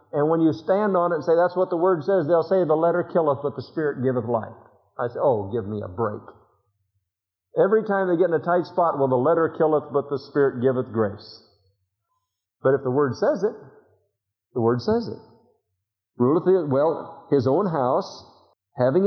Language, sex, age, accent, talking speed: English, male, 50-69, American, 200 wpm